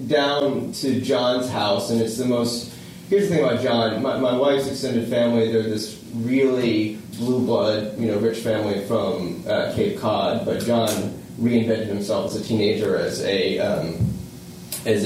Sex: male